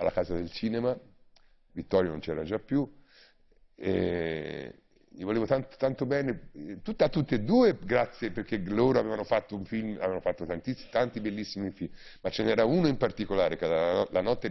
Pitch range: 80-105 Hz